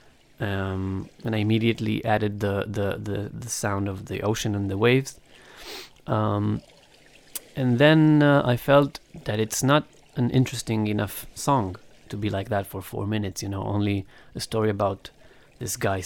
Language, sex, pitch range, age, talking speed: English, male, 100-120 Hz, 30-49, 165 wpm